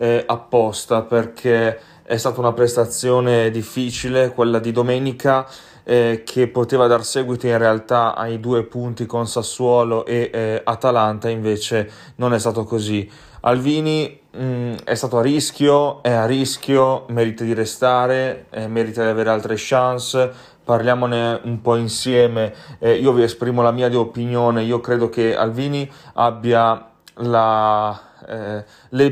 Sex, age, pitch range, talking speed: male, 30-49, 115-125 Hz, 135 wpm